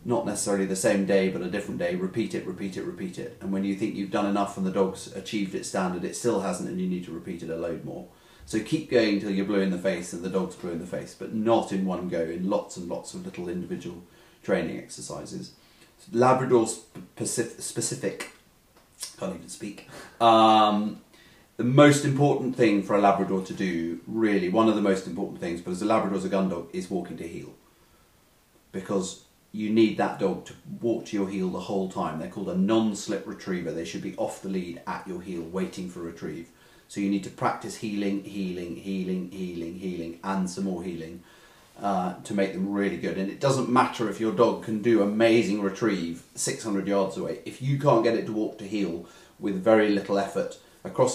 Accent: British